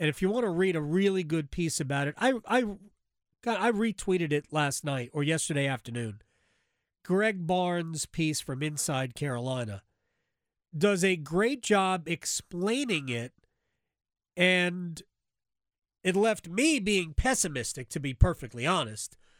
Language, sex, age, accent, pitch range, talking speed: English, male, 40-59, American, 155-205 Hz, 135 wpm